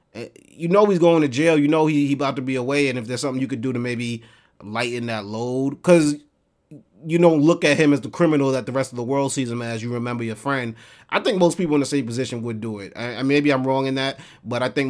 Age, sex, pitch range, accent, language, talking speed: 30-49, male, 110-135 Hz, American, English, 280 wpm